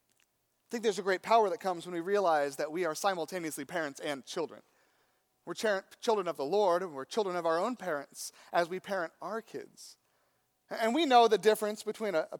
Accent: American